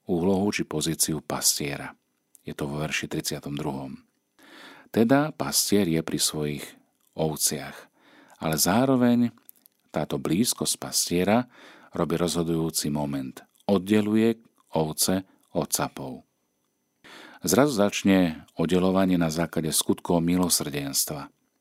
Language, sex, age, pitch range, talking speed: Slovak, male, 50-69, 75-95 Hz, 95 wpm